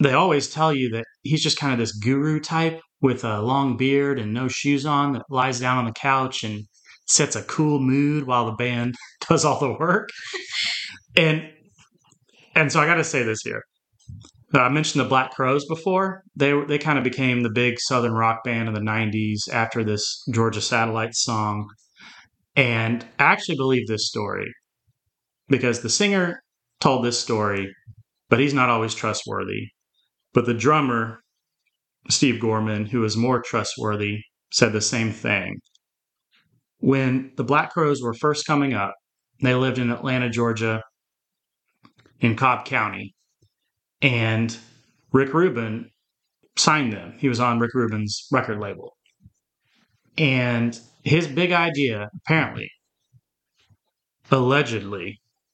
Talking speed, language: 145 wpm, English